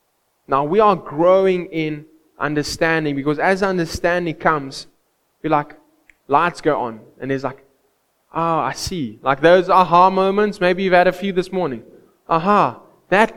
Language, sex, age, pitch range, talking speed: English, male, 20-39, 175-220 Hz, 160 wpm